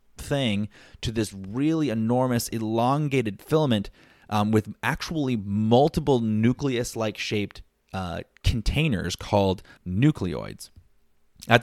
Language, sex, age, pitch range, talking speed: English, male, 20-39, 95-125 Hz, 100 wpm